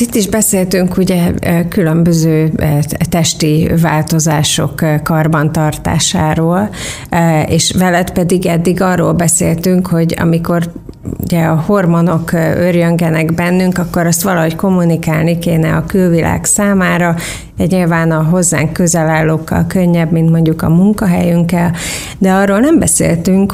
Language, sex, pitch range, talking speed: Hungarian, female, 160-180 Hz, 105 wpm